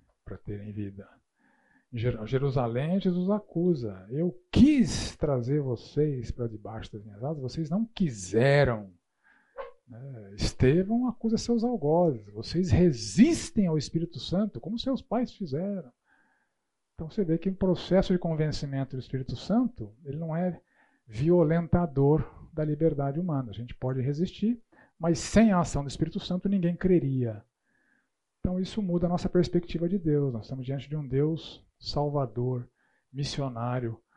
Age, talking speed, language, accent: 50-69, 140 wpm, Portuguese, Brazilian